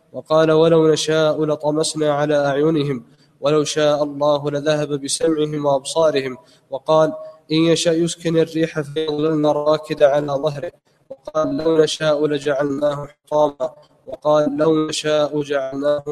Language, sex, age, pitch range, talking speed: Arabic, male, 20-39, 150-160 Hz, 110 wpm